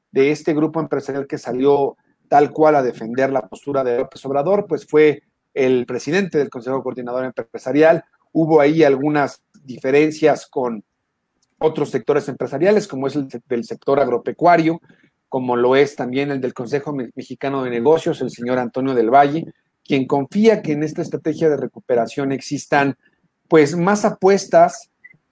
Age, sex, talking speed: 40-59, male, 150 wpm